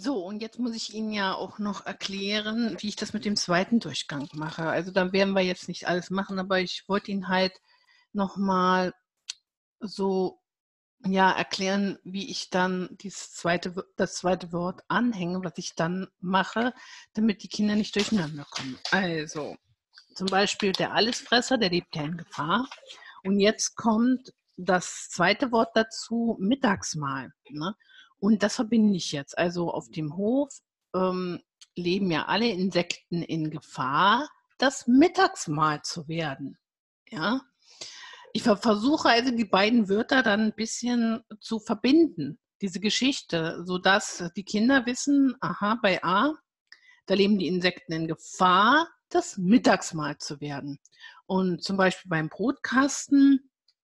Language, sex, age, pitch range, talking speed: German, female, 50-69, 180-235 Hz, 145 wpm